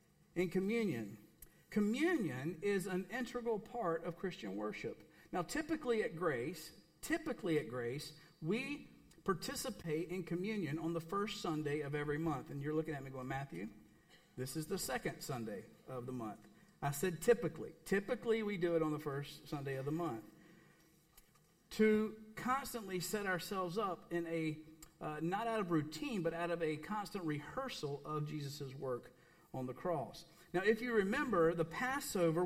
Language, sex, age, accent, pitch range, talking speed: English, male, 50-69, American, 160-215 Hz, 160 wpm